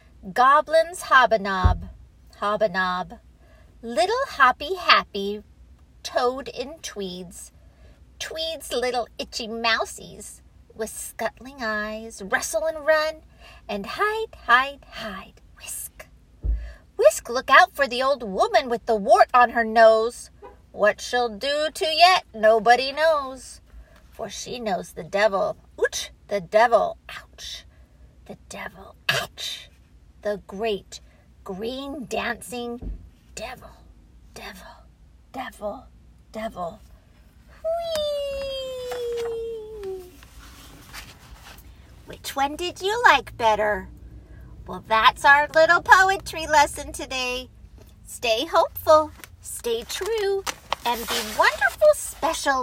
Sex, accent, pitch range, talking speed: female, American, 225-330 Hz, 95 wpm